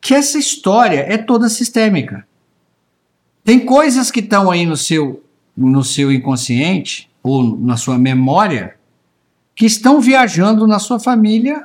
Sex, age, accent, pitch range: male, 60-79, Brazilian, 140-220 Hz